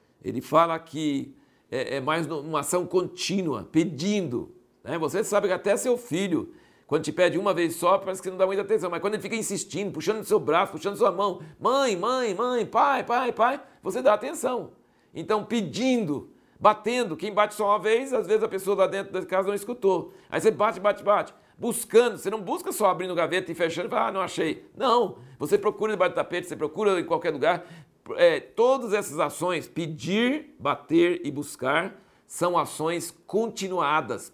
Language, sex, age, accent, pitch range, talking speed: Portuguese, male, 60-79, Brazilian, 160-215 Hz, 185 wpm